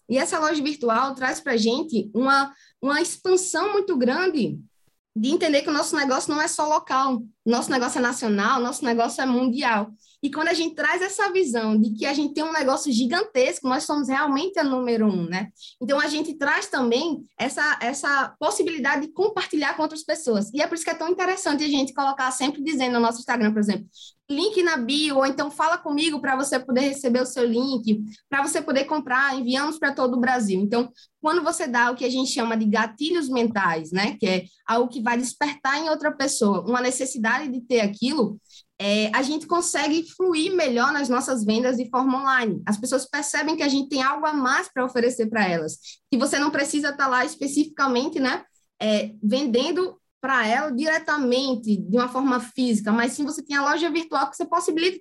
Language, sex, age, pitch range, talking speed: Portuguese, female, 20-39, 245-310 Hz, 205 wpm